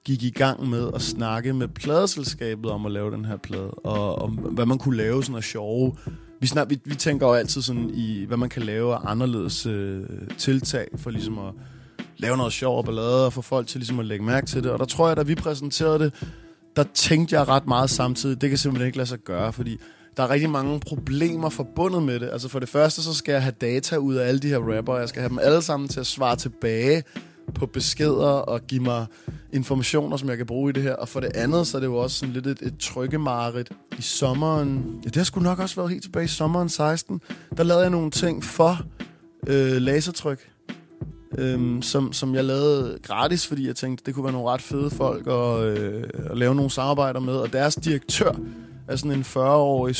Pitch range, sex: 120-145 Hz, male